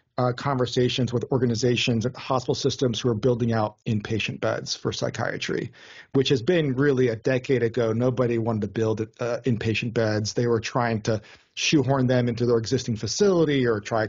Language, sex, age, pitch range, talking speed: English, male, 40-59, 115-130 Hz, 175 wpm